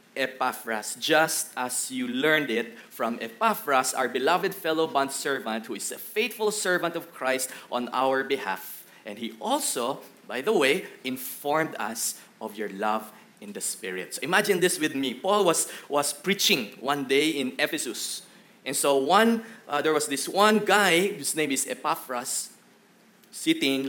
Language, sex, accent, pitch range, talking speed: English, male, Filipino, 120-160 Hz, 160 wpm